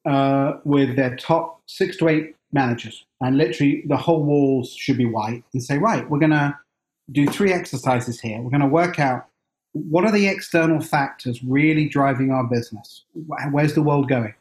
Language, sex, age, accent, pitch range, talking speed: English, male, 40-59, British, 130-160 Hz, 175 wpm